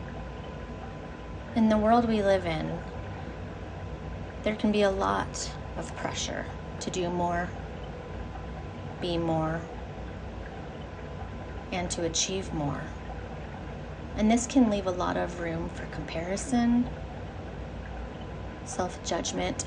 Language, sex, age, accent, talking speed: English, female, 30-49, American, 100 wpm